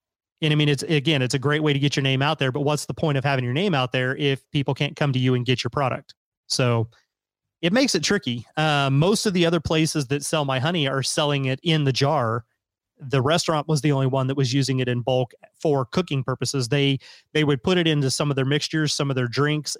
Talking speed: 260 wpm